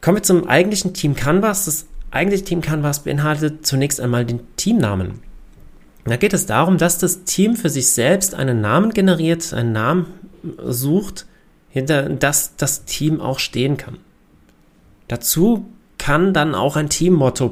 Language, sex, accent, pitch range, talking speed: German, male, German, 120-165 Hz, 150 wpm